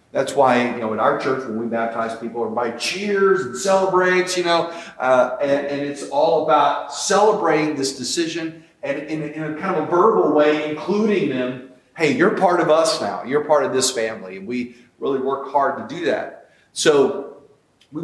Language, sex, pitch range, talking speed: English, male, 135-175 Hz, 195 wpm